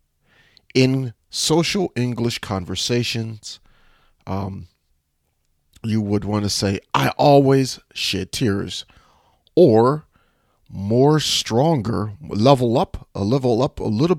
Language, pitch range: English, 90-125 Hz